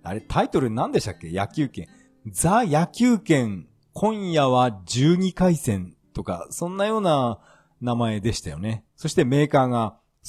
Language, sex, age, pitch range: Japanese, male, 40-59, 100-150 Hz